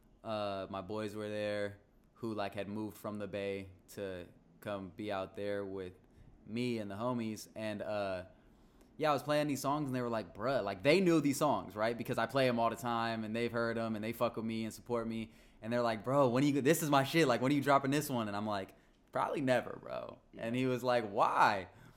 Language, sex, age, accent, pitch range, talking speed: English, male, 20-39, American, 105-130 Hz, 245 wpm